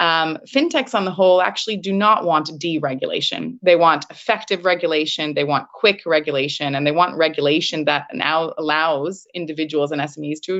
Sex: female